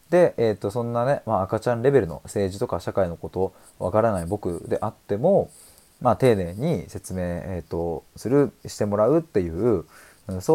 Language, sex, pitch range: Japanese, male, 85-120 Hz